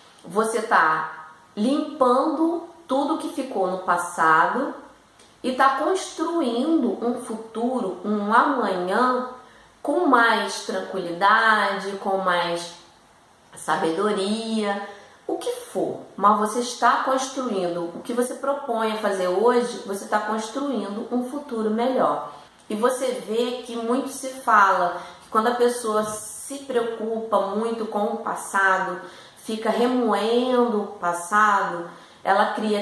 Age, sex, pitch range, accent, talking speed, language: 30-49, female, 195-250 Hz, Brazilian, 115 wpm, Portuguese